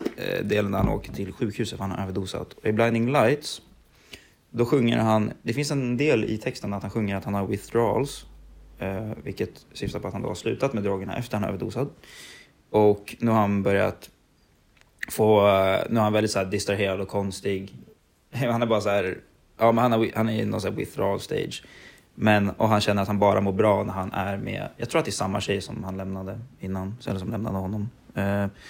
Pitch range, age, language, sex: 100-115 Hz, 20-39, Swedish, male